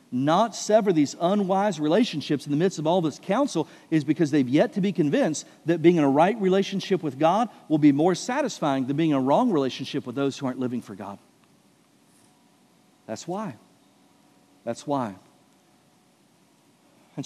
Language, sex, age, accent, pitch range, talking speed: English, male, 50-69, American, 135-185 Hz, 170 wpm